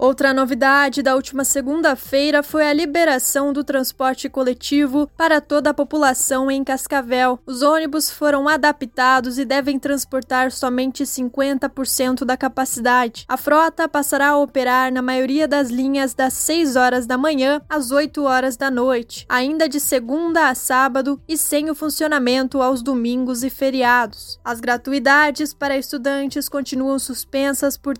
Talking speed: 145 wpm